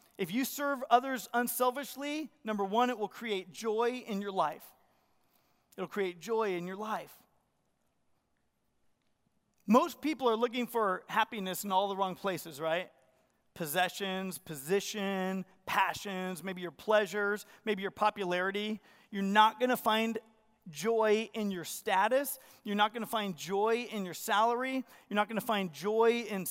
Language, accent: English, American